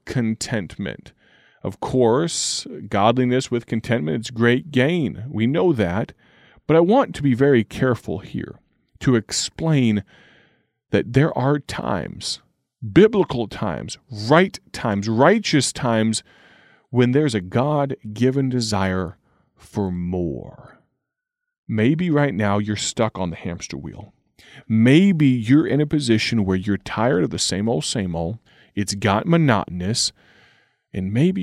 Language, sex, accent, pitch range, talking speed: English, male, American, 100-135 Hz, 130 wpm